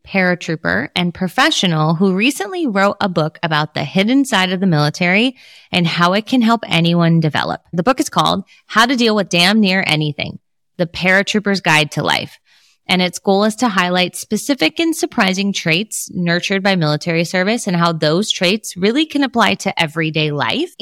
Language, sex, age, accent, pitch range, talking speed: English, female, 20-39, American, 165-210 Hz, 180 wpm